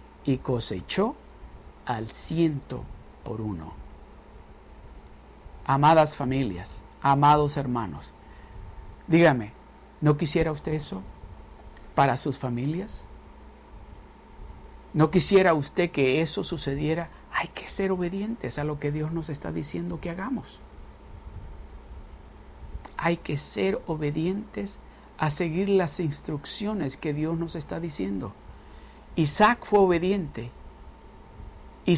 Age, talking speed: 50-69, 100 wpm